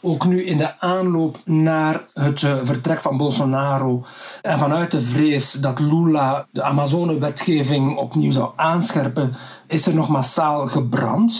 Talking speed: 140 wpm